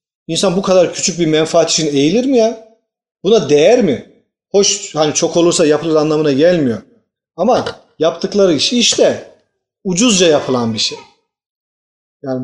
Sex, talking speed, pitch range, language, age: male, 140 wpm, 145-190 Hz, Turkish, 40-59